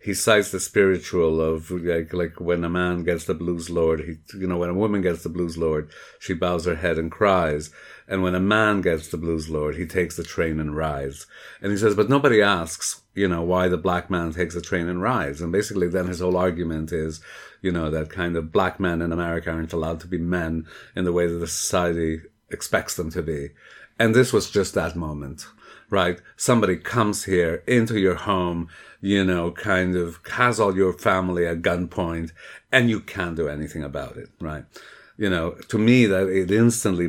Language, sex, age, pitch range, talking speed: English, male, 50-69, 80-100 Hz, 210 wpm